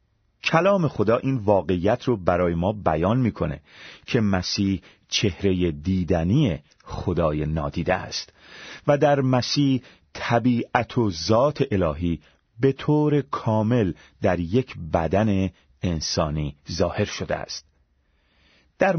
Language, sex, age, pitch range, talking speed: Persian, male, 30-49, 90-125 Hz, 110 wpm